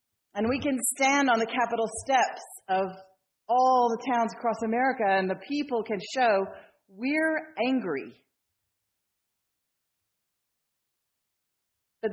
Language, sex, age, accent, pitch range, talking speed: English, female, 40-59, American, 165-225 Hz, 110 wpm